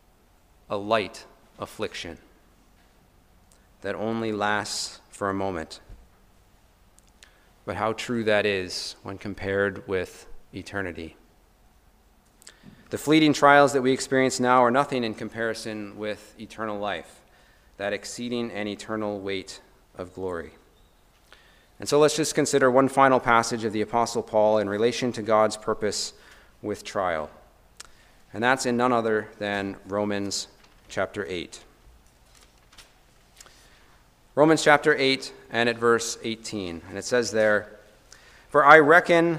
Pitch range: 100-130 Hz